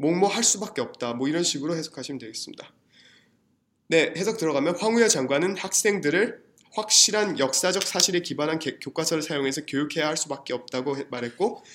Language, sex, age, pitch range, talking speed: English, male, 20-39, 135-180 Hz, 140 wpm